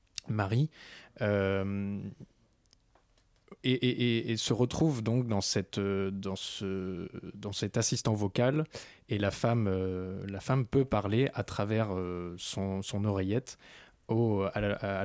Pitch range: 95-115 Hz